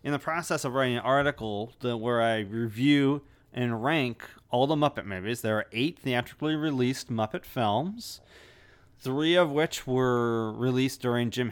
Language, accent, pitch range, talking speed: English, American, 110-145 Hz, 160 wpm